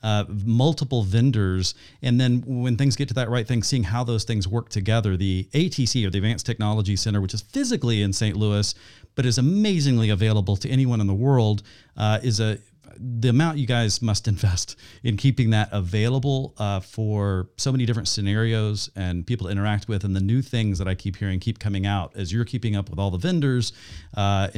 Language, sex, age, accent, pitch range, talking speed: English, male, 40-59, American, 100-125 Hz, 205 wpm